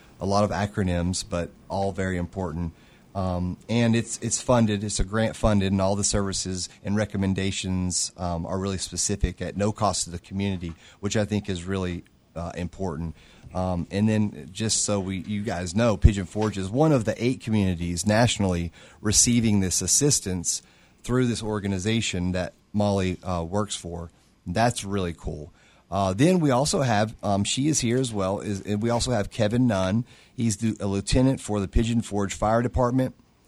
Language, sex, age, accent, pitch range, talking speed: English, male, 30-49, American, 95-115 Hz, 175 wpm